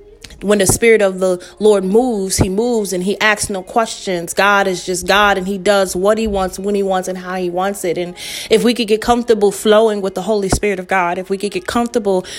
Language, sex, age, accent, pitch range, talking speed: English, female, 30-49, American, 195-225 Hz, 240 wpm